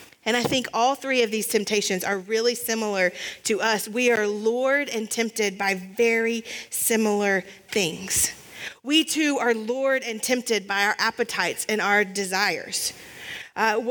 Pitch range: 220-270 Hz